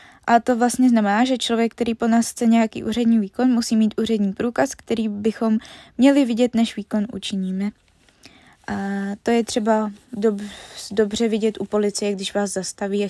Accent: native